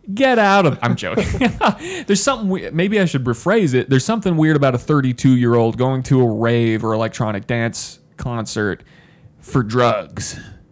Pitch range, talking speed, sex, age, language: 125-175 Hz, 160 wpm, male, 30-49, English